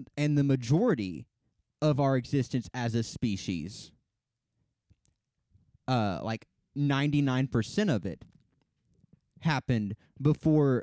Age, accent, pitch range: 20-39, American, 115-140 Hz